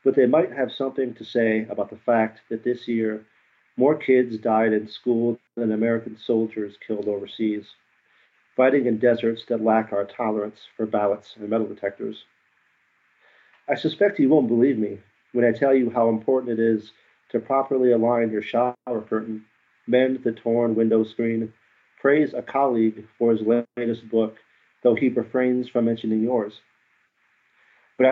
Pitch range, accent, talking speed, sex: 110-125 Hz, American, 160 wpm, male